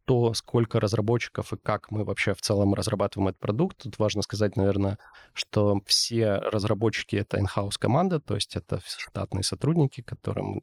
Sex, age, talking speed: male, 20-39, 160 wpm